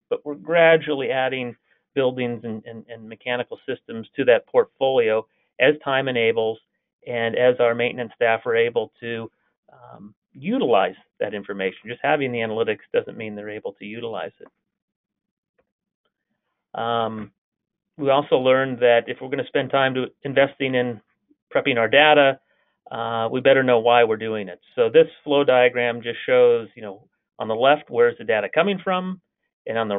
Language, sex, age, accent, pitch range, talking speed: English, male, 30-49, American, 115-145 Hz, 165 wpm